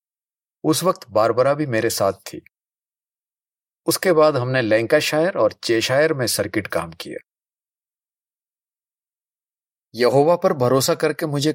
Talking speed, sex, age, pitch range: 120 wpm, male, 50-69, 115-160 Hz